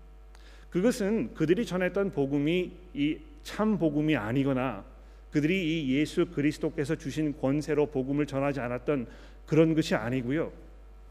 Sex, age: male, 40-59